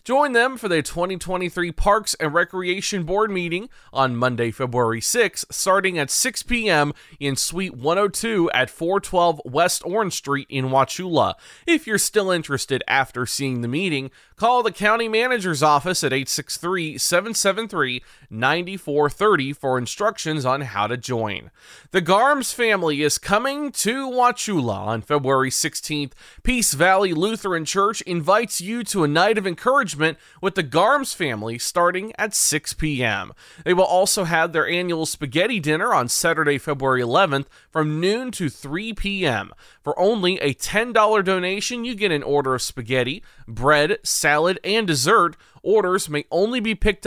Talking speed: 150 wpm